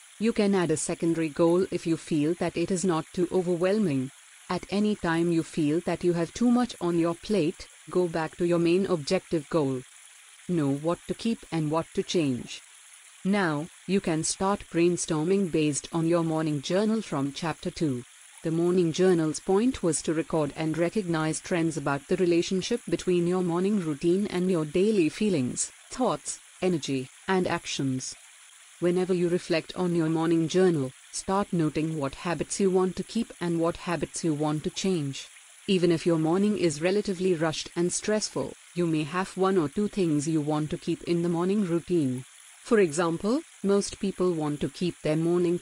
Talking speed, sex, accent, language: 180 wpm, female, native, Hindi